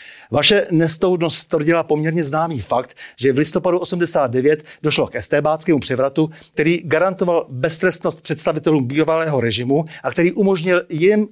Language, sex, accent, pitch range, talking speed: Czech, male, native, 140-165 Hz, 125 wpm